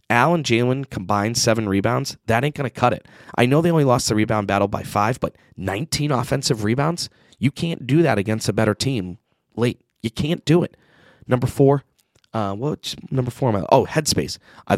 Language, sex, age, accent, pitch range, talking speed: English, male, 30-49, American, 100-130 Hz, 195 wpm